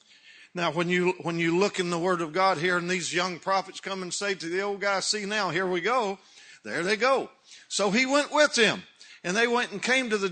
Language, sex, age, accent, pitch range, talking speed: English, male, 50-69, American, 175-210 Hz, 250 wpm